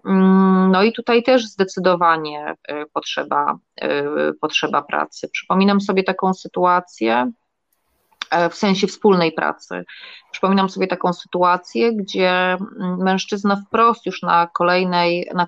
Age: 30-49